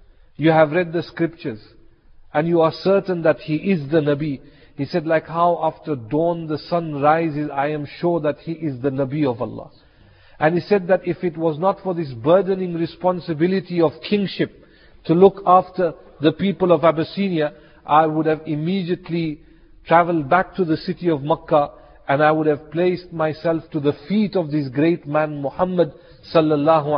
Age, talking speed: 50-69, 180 wpm